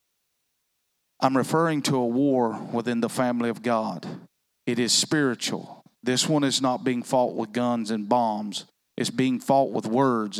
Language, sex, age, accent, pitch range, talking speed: English, male, 40-59, American, 115-130 Hz, 160 wpm